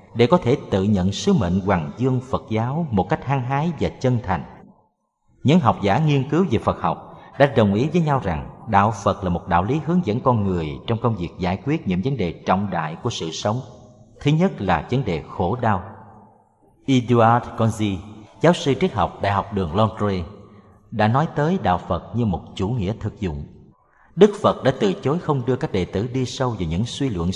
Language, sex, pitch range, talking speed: Vietnamese, male, 95-140 Hz, 215 wpm